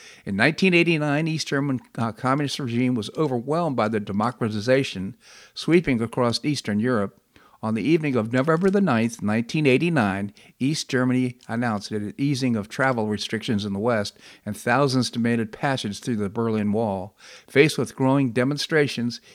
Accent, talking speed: American, 140 wpm